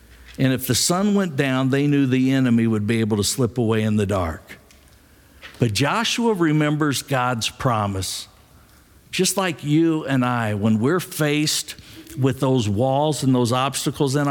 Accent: American